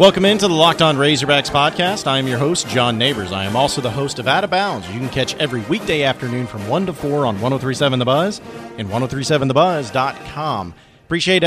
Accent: American